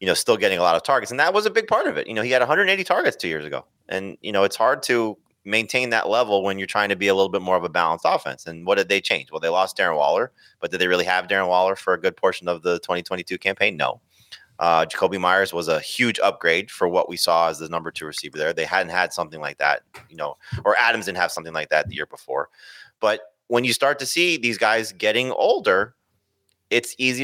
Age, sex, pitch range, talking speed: 30-49, male, 90-115 Hz, 265 wpm